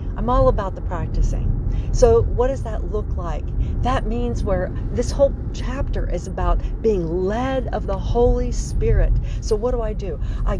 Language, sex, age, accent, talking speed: English, female, 50-69, American, 175 wpm